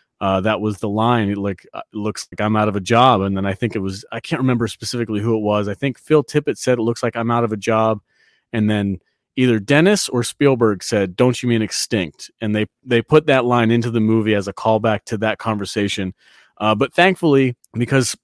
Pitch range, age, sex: 100-120 Hz, 30-49, male